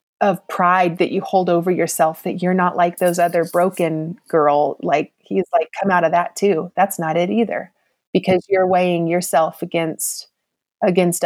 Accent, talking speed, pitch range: American, 175 wpm, 170-205 Hz